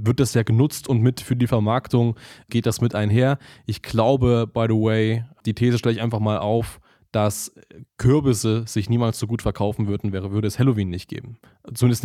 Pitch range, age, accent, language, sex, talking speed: 115-140 Hz, 20-39, German, German, male, 205 wpm